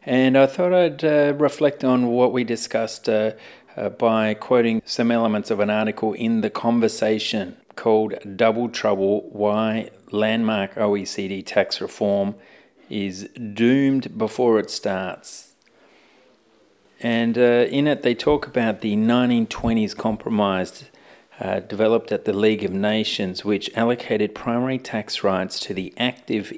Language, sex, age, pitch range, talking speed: English, male, 40-59, 105-120 Hz, 135 wpm